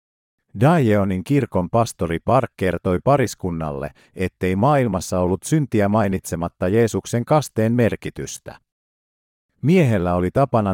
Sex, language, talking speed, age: male, Finnish, 95 wpm, 50-69